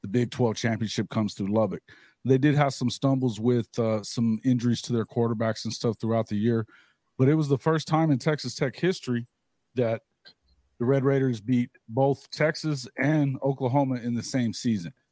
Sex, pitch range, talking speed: male, 110-135 Hz, 185 wpm